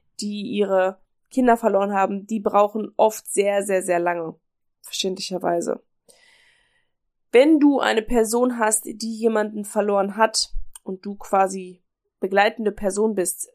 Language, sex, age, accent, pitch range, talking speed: German, female, 20-39, German, 200-235 Hz, 125 wpm